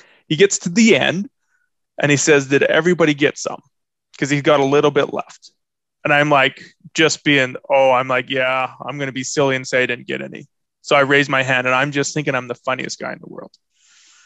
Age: 20-39